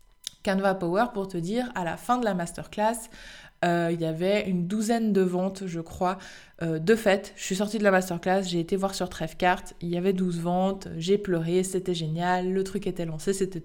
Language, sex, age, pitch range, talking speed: French, female, 20-39, 185-230 Hz, 215 wpm